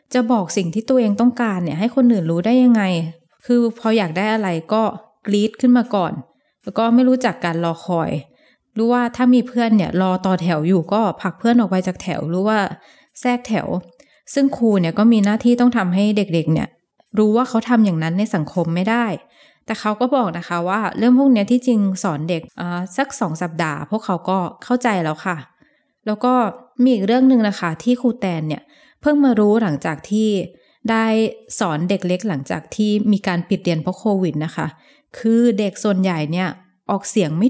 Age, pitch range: 20-39, 180-235 Hz